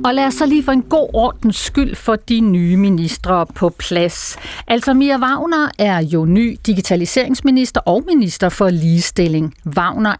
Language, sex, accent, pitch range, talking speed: Danish, female, native, 180-255 Hz, 165 wpm